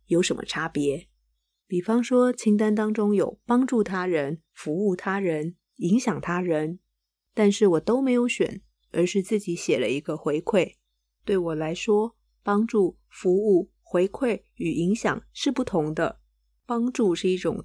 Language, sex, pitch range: Chinese, female, 170-215 Hz